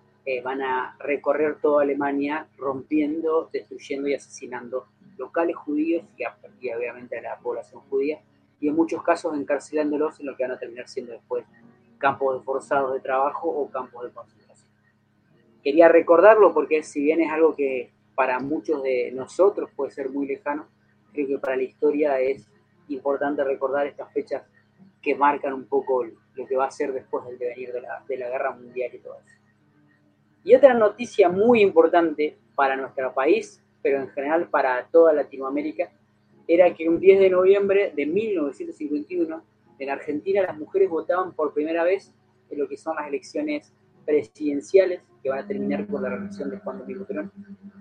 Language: Spanish